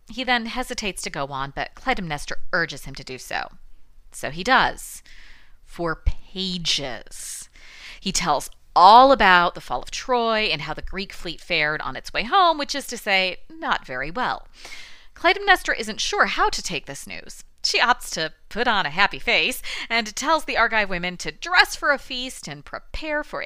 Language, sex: English, female